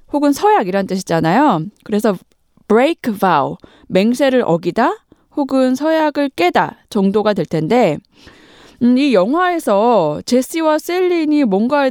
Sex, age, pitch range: female, 20-39, 190-285 Hz